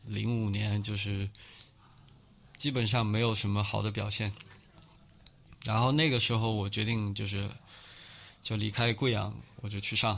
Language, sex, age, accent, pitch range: Chinese, male, 20-39, native, 105-120 Hz